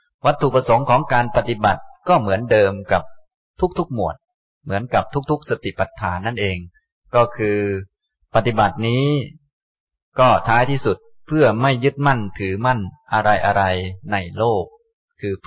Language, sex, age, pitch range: Thai, male, 30-49, 100-130 Hz